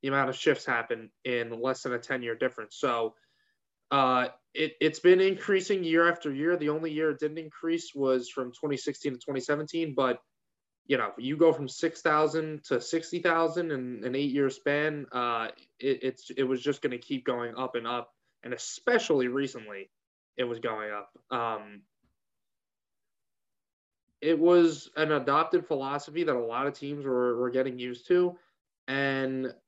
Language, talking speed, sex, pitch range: English, 175 wpm, male, 130-155 Hz